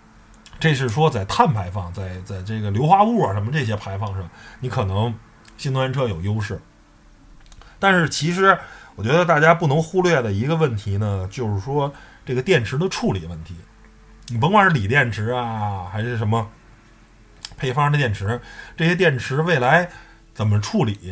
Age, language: 20-39, Chinese